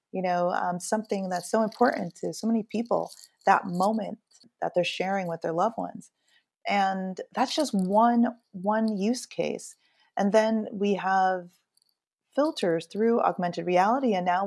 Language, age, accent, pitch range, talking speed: English, 30-49, American, 180-220 Hz, 145 wpm